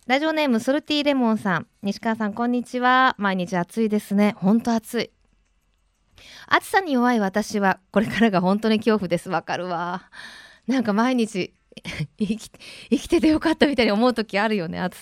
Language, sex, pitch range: Japanese, female, 195-275 Hz